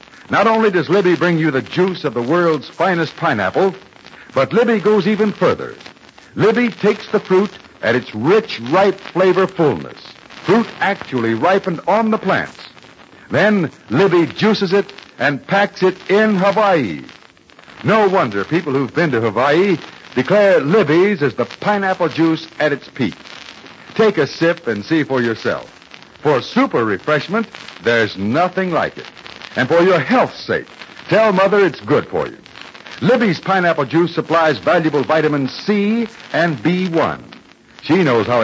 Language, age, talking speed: English, 60-79, 150 wpm